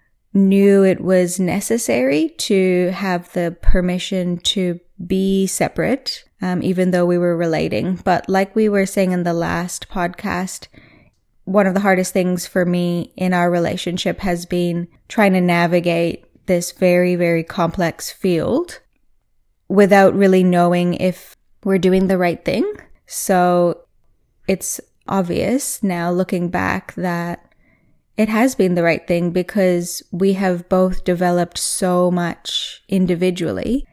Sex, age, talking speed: female, 10-29, 135 wpm